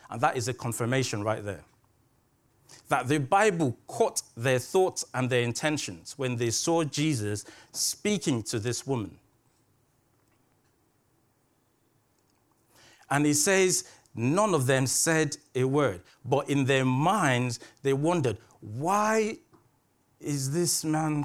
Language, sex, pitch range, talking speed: English, male, 120-155 Hz, 120 wpm